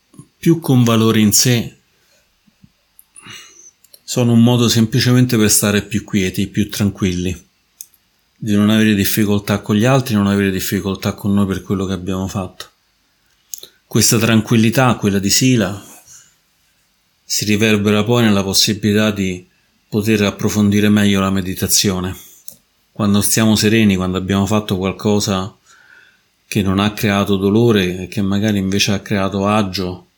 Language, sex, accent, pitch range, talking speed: Italian, male, native, 95-110 Hz, 135 wpm